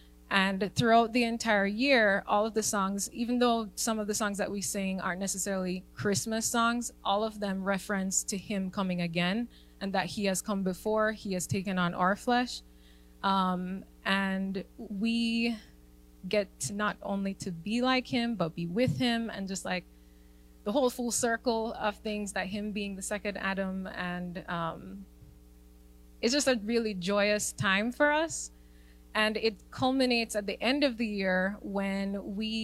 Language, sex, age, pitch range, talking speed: English, female, 20-39, 185-230 Hz, 170 wpm